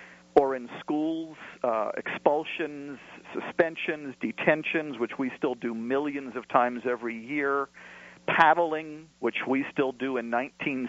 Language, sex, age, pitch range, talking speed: English, male, 50-69, 100-145 Hz, 125 wpm